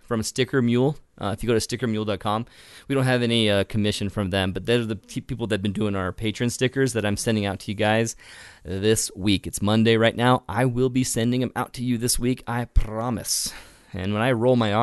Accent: American